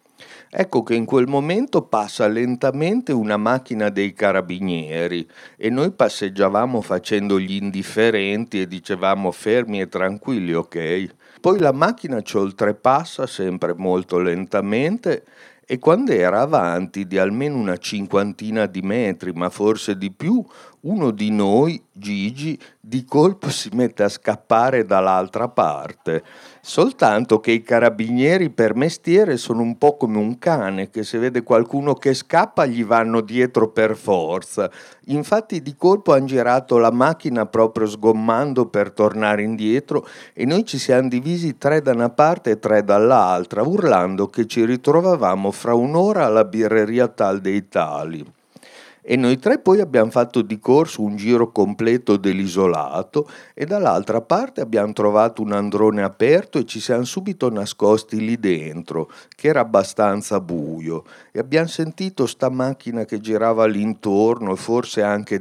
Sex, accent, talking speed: male, native, 145 wpm